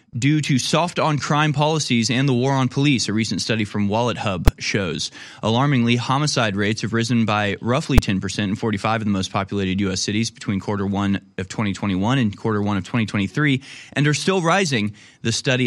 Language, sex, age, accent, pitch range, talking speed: English, male, 20-39, American, 100-130 Hz, 190 wpm